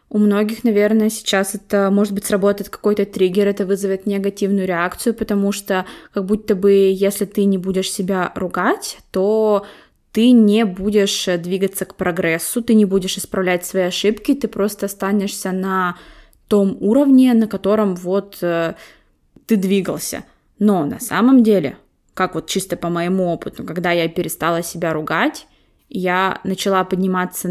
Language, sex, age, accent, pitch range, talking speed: Russian, female, 20-39, native, 185-210 Hz, 150 wpm